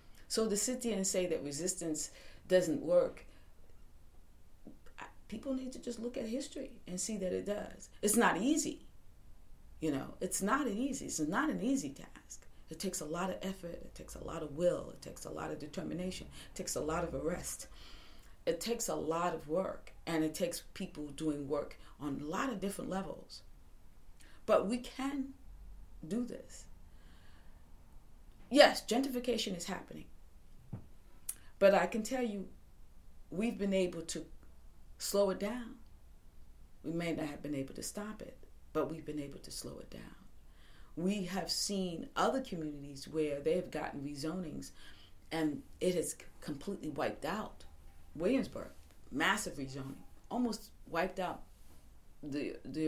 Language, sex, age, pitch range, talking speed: English, female, 40-59, 145-225 Hz, 160 wpm